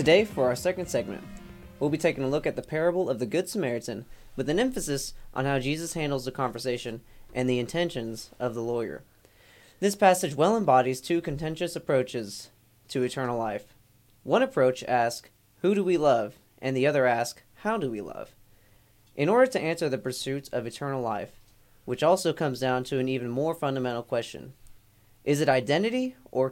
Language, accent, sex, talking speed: English, American, male, 180 wpm